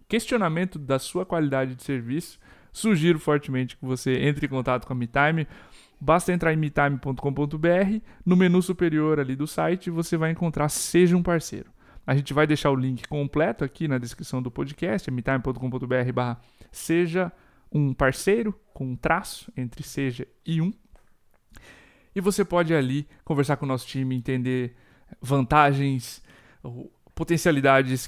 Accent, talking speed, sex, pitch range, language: Brazilian, 145 wpm, male, 130-165 Hz, Portuguese